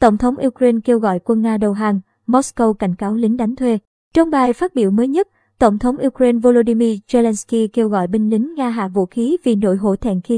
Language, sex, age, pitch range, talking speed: Vietnamese, male, 20-39, 215-255 Hz, 225 wpm